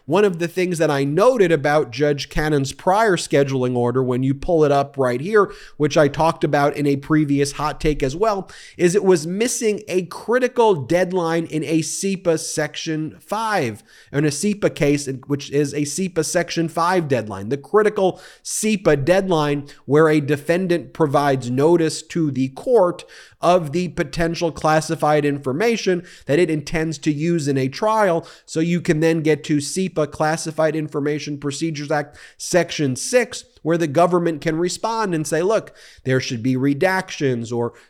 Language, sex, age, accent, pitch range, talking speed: English, male, 30-49, American, 145-180 Hz, 170 wpm